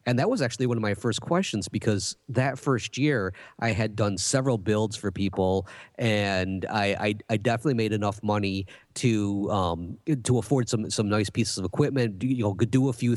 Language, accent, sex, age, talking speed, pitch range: English, American, male, 30-49, 205 wpm, 100-120 Hz